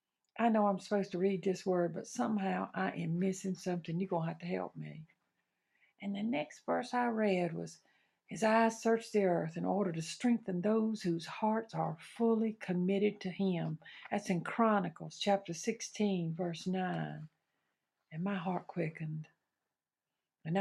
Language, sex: English, female